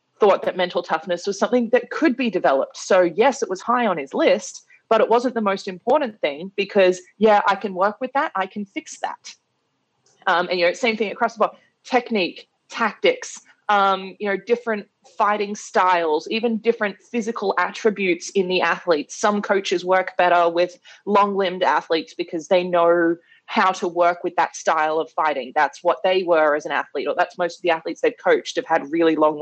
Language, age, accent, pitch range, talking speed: English, 20-39, Australian, 170-215 Hz, 200 wpm